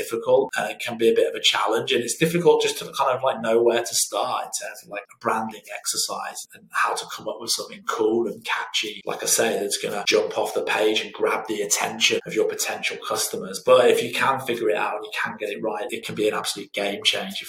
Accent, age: British, 30-49